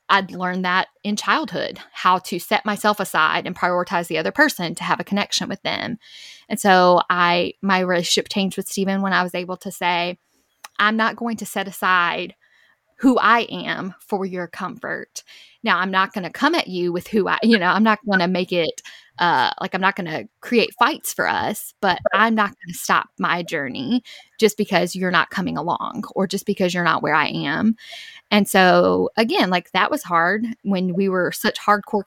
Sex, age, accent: female, 10-29, American